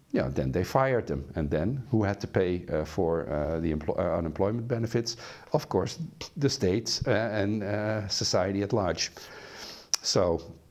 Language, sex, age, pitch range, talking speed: English, male, 50-69, 80-105 Hz, 170 wpm